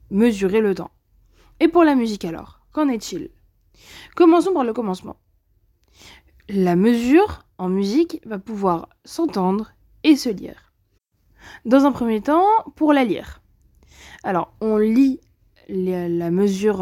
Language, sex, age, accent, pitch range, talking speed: French, female, 20-39, French, 190-295 Hz, 130 wpm